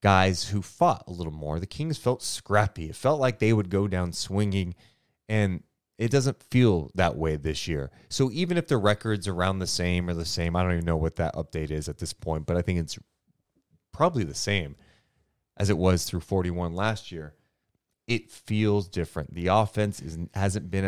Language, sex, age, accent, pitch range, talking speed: English, male, 30-49, American, 85-110 Hz, 200 wpm